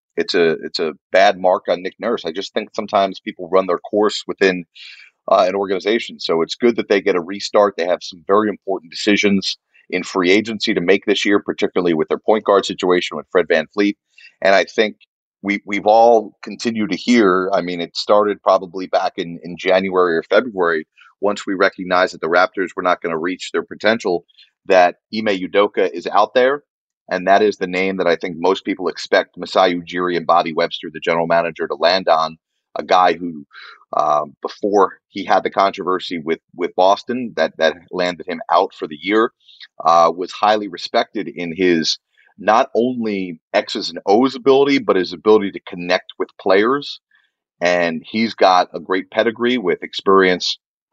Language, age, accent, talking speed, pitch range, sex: English, 30-49, American, 190 wpm, 90-110 Hz, male